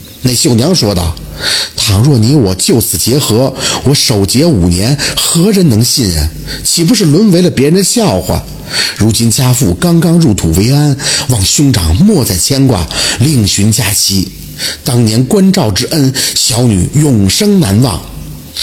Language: Chinese